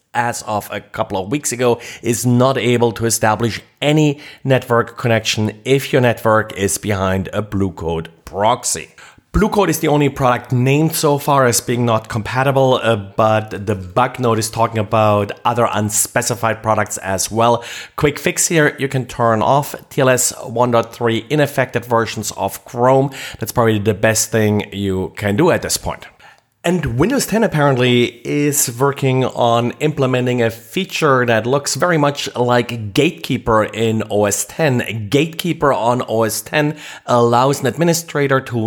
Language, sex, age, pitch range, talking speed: English, male, 30-49, 110-135 Hz, 155 wpm